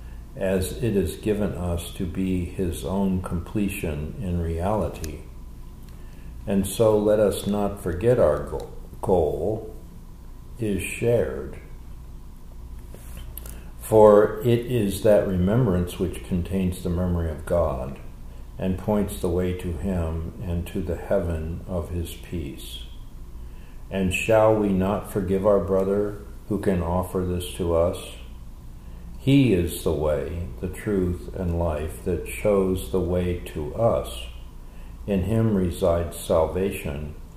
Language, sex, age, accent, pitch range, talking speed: English, male, 60-79, American, 70-100 Hz, 125 wpm